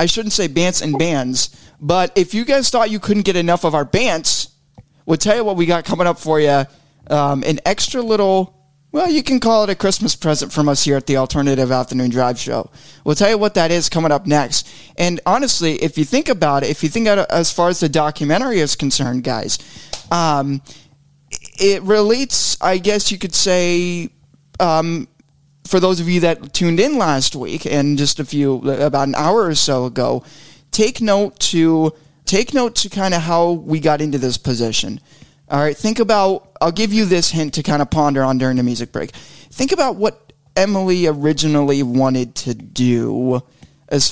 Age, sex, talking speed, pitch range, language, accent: 20-39, male, 195 wpm, 140-185 Hz, English, American